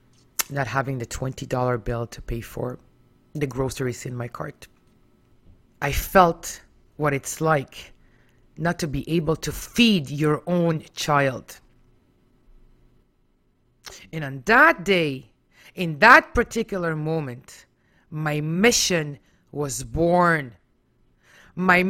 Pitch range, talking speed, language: 135-220 Hz, 110 wpm, English